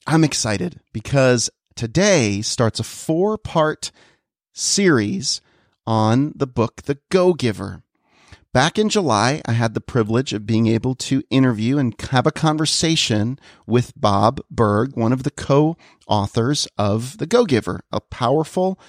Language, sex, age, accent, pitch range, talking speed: English, male, 40-59, American, 110-145 Hz, 130 wpm